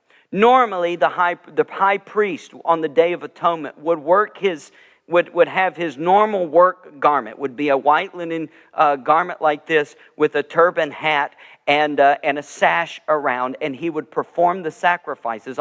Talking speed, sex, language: 175 wpm, male, English